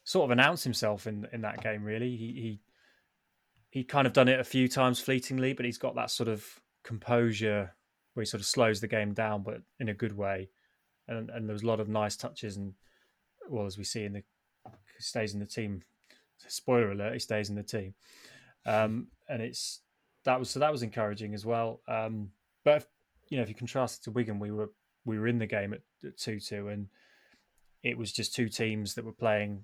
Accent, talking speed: British, 220 wpm